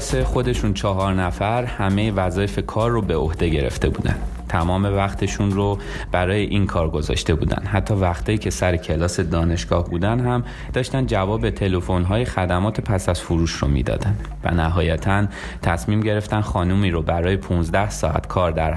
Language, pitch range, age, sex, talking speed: Persian, 85-105 Hz, 30-49, male, 150 wpm